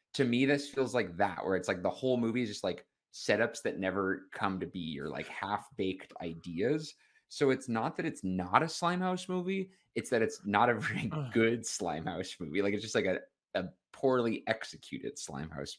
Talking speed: 200 wpm